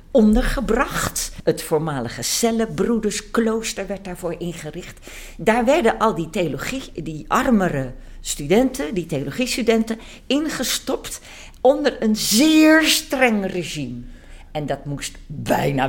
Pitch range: 175-225 Hz